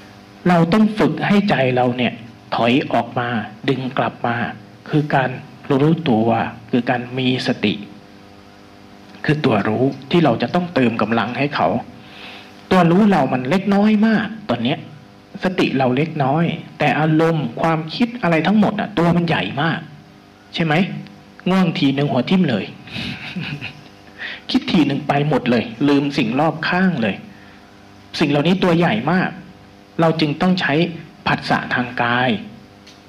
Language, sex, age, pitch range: Thai, male, 60-79, 125-180 Hz